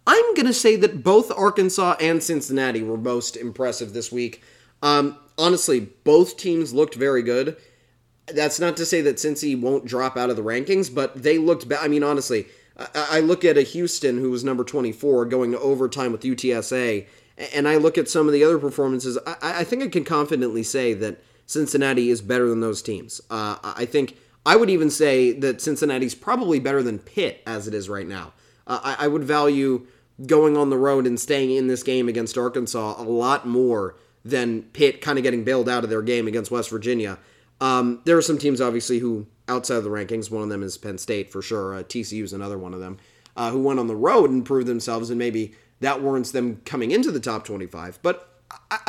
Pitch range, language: 120-150 Hz, English